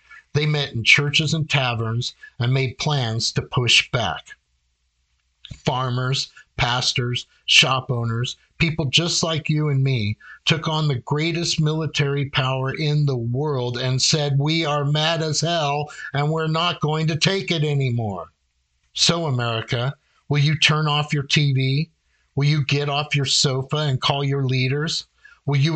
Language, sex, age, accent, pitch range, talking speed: English, male, 50-69, American, 130-150 Hz, 155 wpm